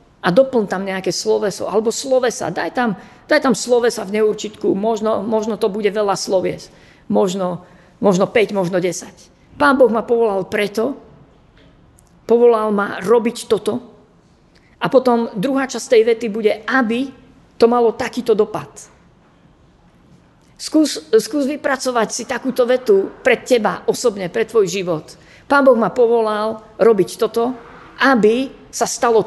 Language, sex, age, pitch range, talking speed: Slovak, female, 50-69, 180-235 Hz, 135 wpm